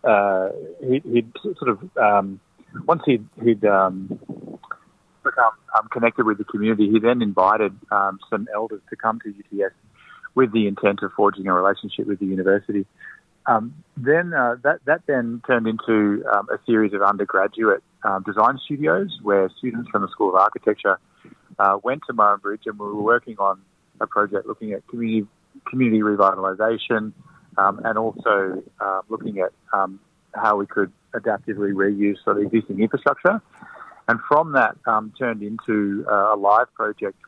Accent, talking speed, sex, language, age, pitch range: Australian, 165 wpm, male, English, 30-49, 100-115 Hz